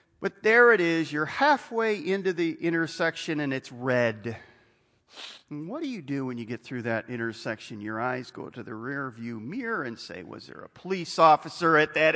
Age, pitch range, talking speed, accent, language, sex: 40-59, 120-170 Hz, 195 wpm, American, English, male